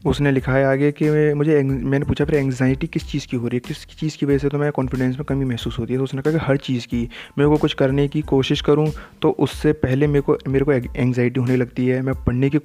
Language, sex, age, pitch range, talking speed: Hindi, male, 20-39, 130-145 Hz, 275 wpm